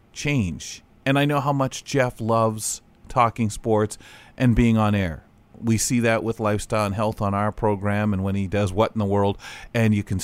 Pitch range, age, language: 95-120 Hz, 40-59, English